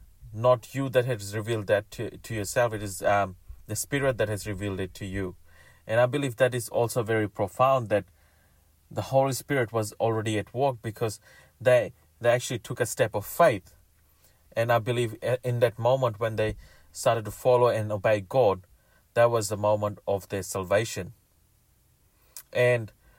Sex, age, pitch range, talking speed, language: male, 30-49, 95-120 Hz, 175 wpm, English